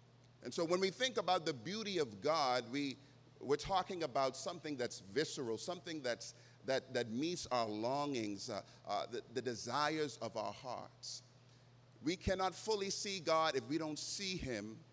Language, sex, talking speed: English, male, 170 wpm